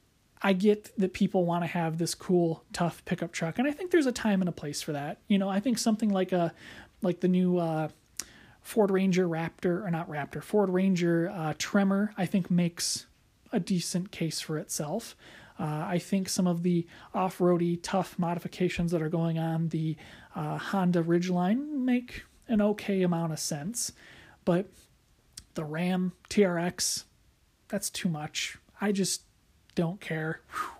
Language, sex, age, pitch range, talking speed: English, male, 30-49, 160-195 Hz, 170 wpm